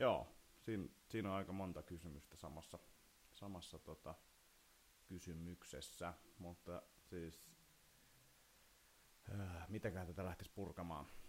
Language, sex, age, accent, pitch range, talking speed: Finnish, male, 30-49, native, 80-95 Hz, 95 wpm